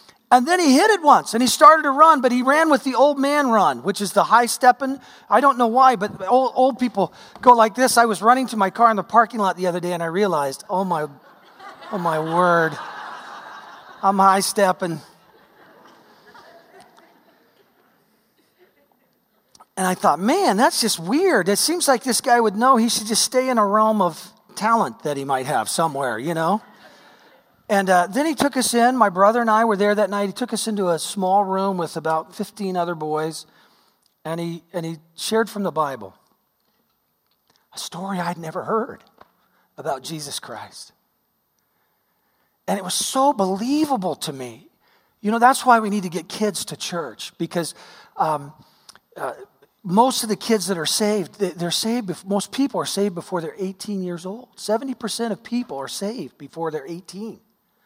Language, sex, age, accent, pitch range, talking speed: English, male, 40-59, American, 175-240 Hz, 185 wpm